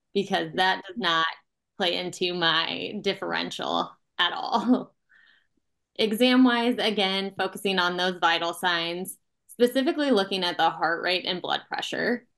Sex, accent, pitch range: female, American, 170-210 Hz